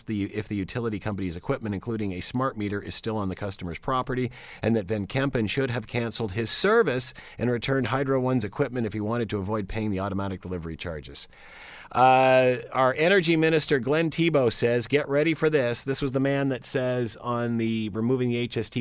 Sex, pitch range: male, 115-170 Hz